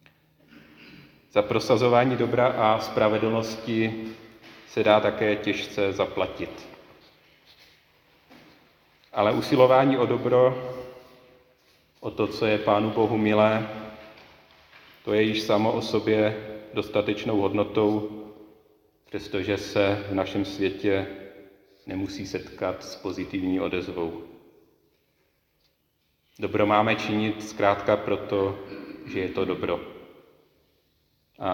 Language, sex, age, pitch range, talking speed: Czech, male, 40-59, 95-110 Hz, 95 wpm